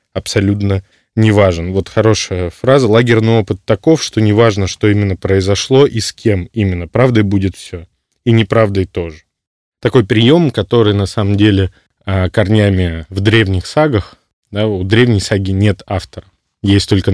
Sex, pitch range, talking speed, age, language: male, 95-110 Hz, 145 wpm, 20-39, Russian